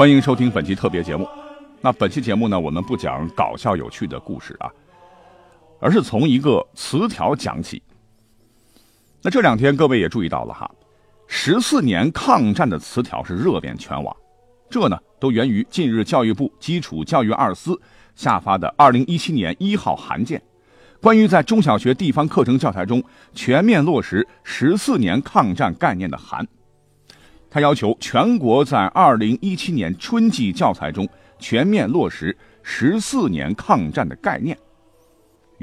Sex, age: male, 50-69